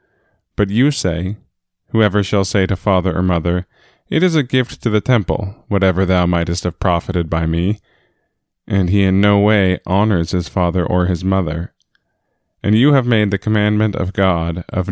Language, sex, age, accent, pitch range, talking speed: English, male, 20-39, American, 90-105 Hz, 175 wpm